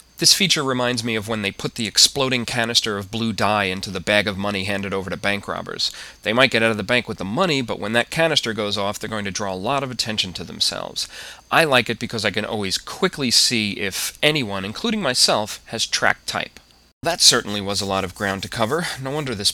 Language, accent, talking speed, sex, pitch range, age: English, American, 240 wpm, male, 100-125 Hz, 30-49